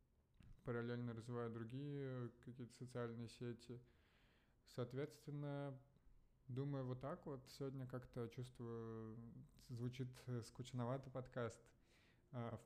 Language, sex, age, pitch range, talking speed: Russian, male, 20-39, 115-130 Hz, 85 wpm